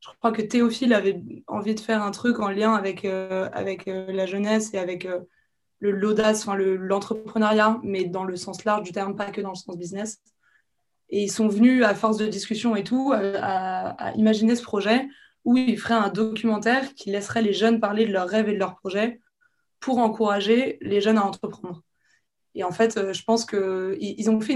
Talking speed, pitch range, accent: 215 wpm, 195-225 Hz, French